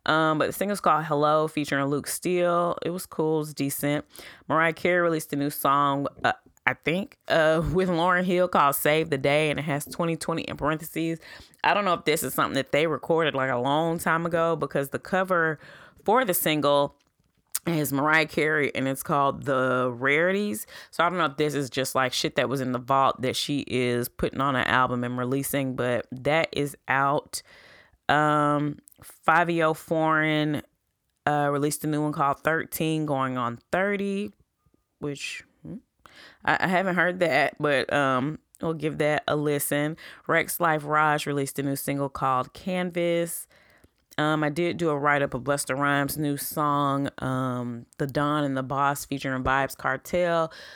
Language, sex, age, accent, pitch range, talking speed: English, female, 20-39, American, 135-160 Hz, 180 wpm